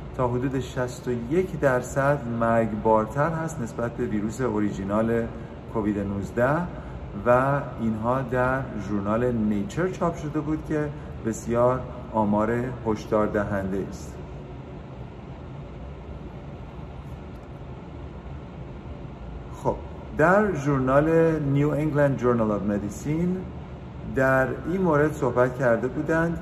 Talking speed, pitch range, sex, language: 95 wpm, 105-140 Hz, male, Persian